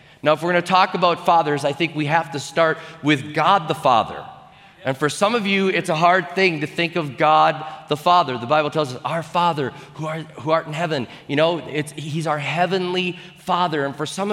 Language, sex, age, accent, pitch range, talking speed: English, male, 40-59, American, 150-185 Hz, 220 wpm